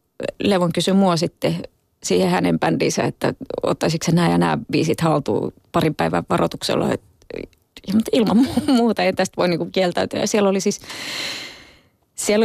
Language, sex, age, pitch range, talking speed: Finnish, female, 30-49, 160-185 Hz, 140 wpm